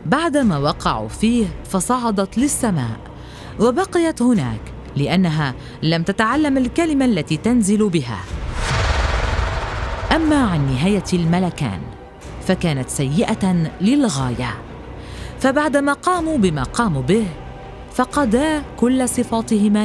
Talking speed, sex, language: 90 wpm, female, Arabic